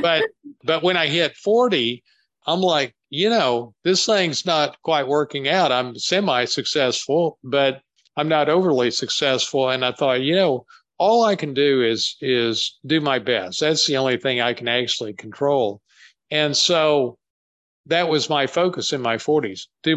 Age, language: 50-69, English